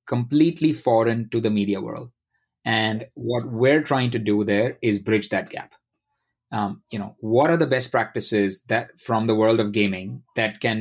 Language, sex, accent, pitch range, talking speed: English, male, Indian, 110-130 Hz, 185 wpm